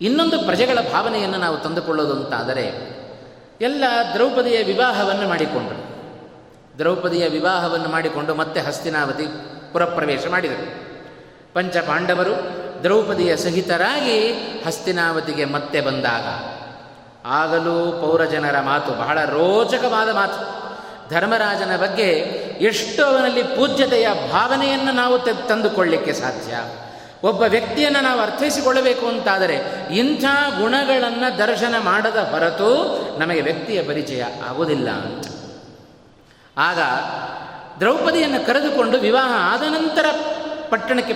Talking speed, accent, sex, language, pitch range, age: 85 wpm, native, male, Kannada, 150-250 Hz, 30-49